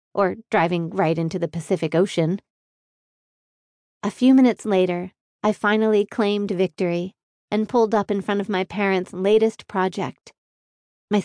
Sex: female